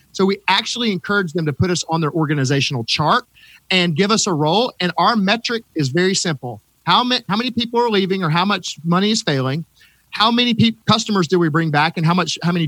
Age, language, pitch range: 40-59, English, 155-195 Hz